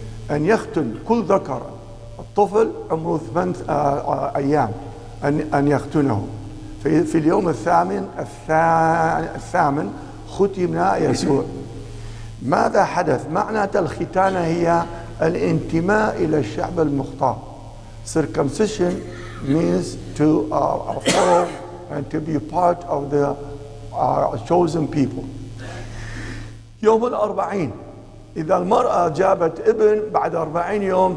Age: 60-79